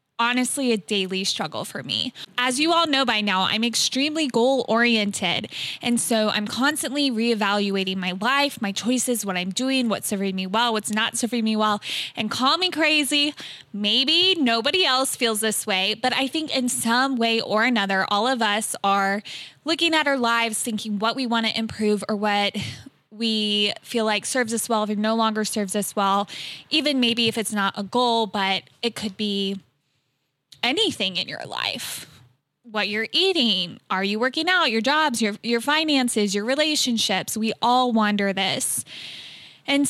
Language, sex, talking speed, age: English, female, 180 wpm, 20-39